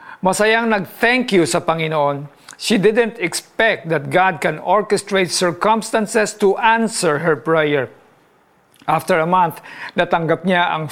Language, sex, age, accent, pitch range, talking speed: Filipino, male, 50-69, native, 160-210 Hz, 125 wpm